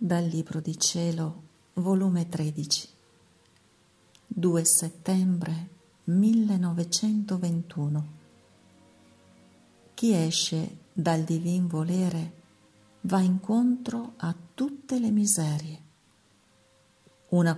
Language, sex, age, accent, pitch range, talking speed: Italian, female, 50-69, native, 160-190 Hz, 70 wpm